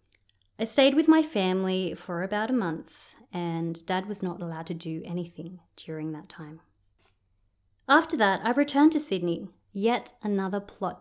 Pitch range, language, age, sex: 165-205 Hz, English, 30-49, female